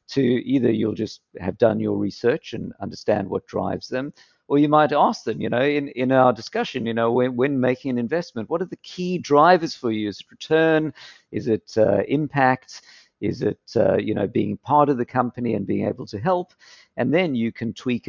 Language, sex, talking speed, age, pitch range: English, male, 215 wpm, 50-69, 115-145 Hz